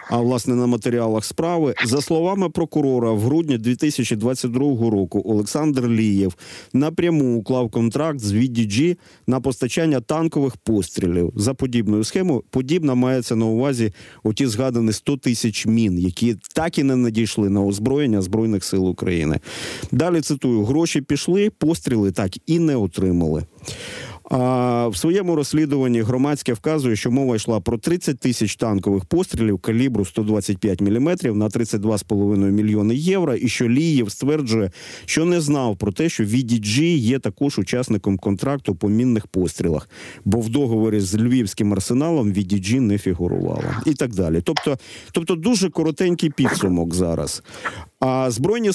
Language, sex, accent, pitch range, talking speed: Ukrainian, male, native, 105-145 Hz, 140 wpm